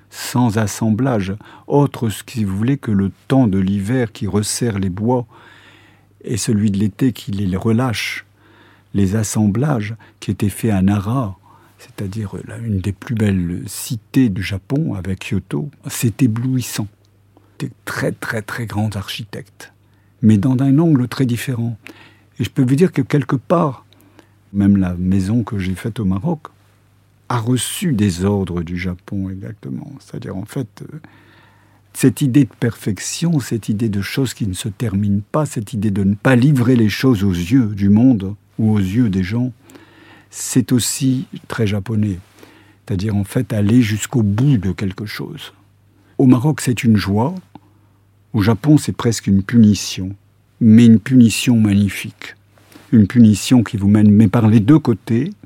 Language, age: French, 60-79